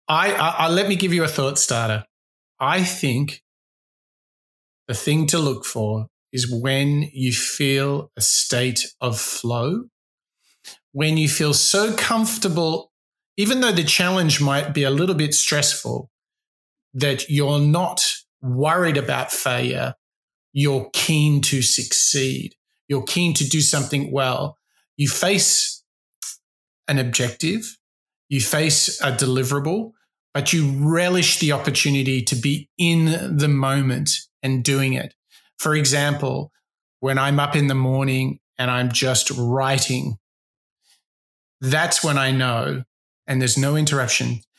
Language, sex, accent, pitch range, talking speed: English, male, Australian, 130-155 Hz, 130 wpm